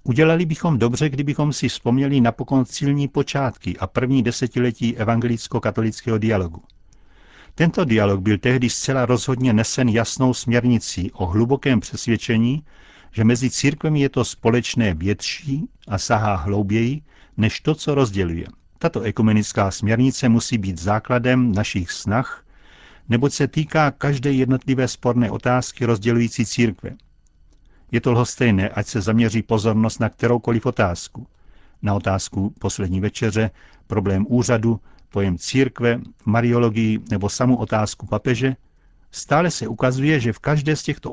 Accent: native